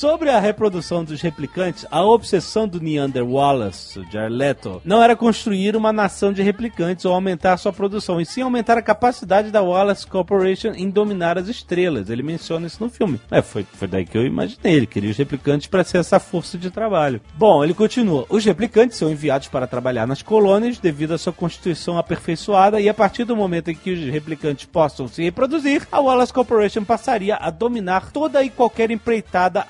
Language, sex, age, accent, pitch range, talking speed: Portuguese, male, 40-59, Brazilian, 150-210 Hz, 190 wpm